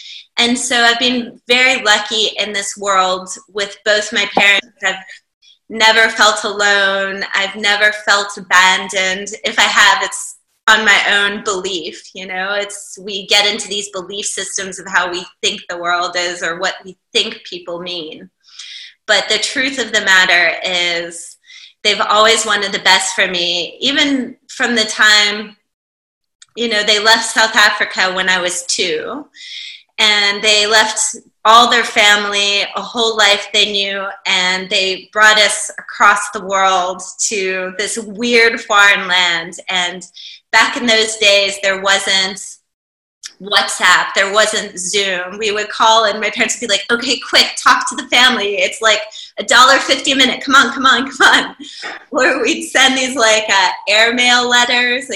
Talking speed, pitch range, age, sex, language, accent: 160 wpm, 195-235 Hz, 20-39, female, English, American